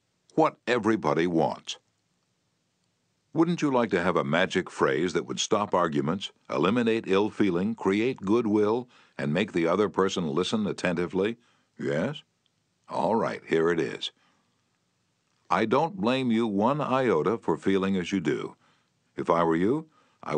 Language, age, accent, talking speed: English, 60-79, American, 140 wpm